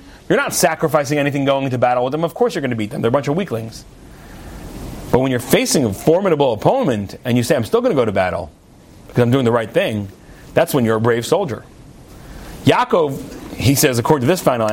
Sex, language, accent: male, English, American